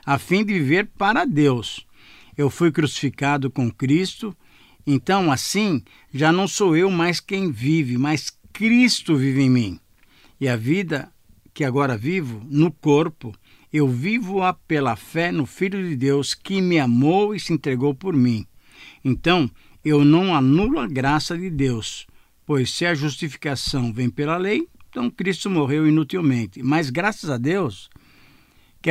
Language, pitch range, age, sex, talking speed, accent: Portuguese, 135-175 Hz, 60-79, male, 155 wpm, Brazilian